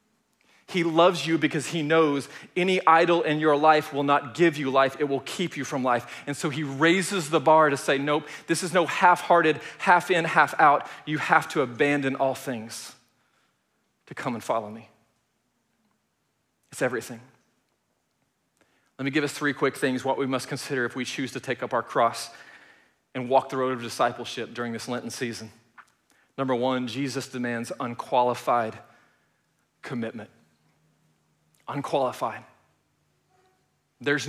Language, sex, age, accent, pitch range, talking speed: English, male, 40-59, American, 135-175 Hz, 150 wpm